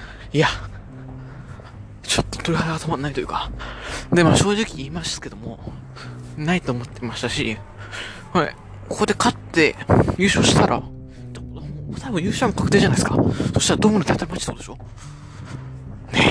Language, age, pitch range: Japanese, 20-39, 120-165 Hz